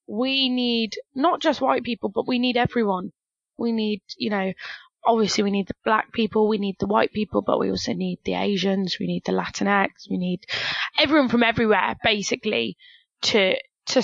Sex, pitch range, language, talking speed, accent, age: female, 195-240 Hz, English, 185 wpm, British, 20-39